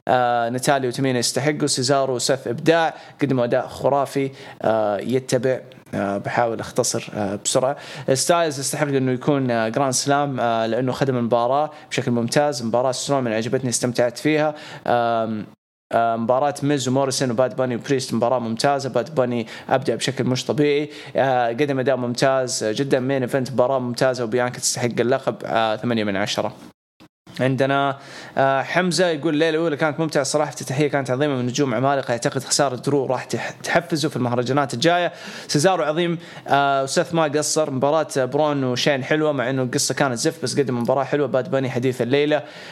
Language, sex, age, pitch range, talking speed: English, male, 20-39, 125-150 Hz, 150 wpm